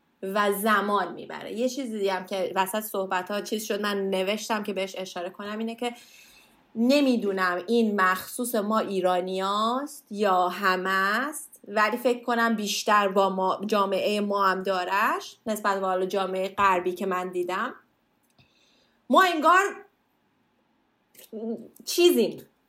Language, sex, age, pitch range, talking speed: Persian, female, 30-49, 200-285 Hz, 130 wpm